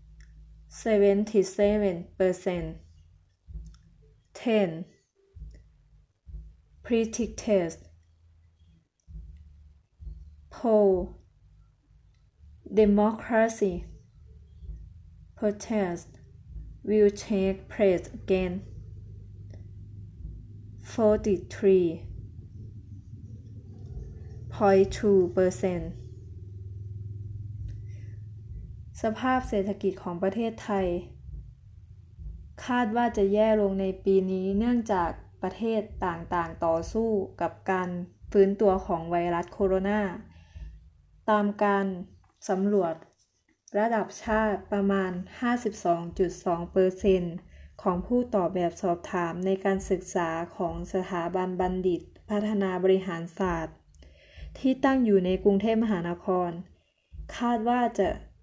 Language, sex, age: Thai, female, 20-39